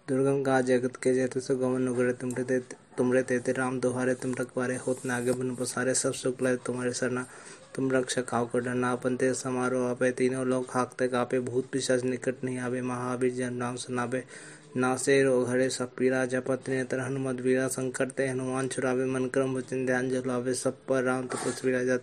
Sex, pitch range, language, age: male, 125-130 Hz, Hindi, 20-39